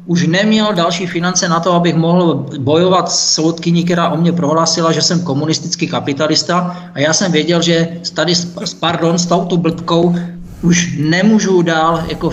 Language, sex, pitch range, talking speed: Czech, male, 155-180 Hz, 165 wpm